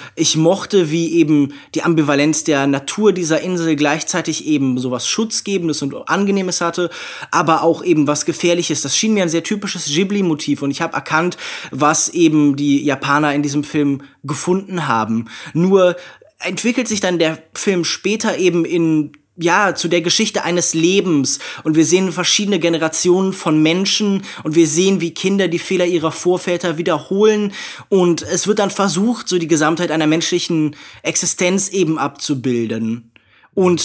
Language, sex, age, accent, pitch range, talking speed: German, male, 20-39, German, 150-185 Hz, 155 wpm